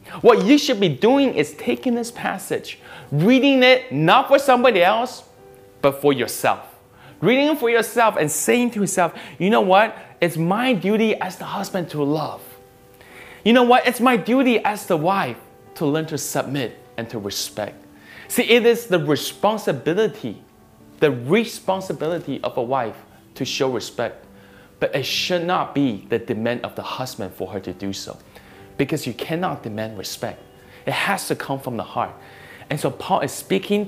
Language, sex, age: Chinese, male, 20-39